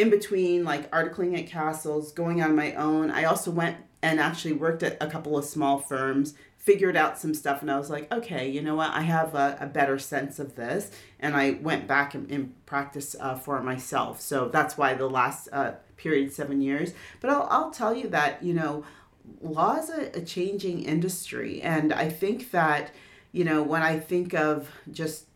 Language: English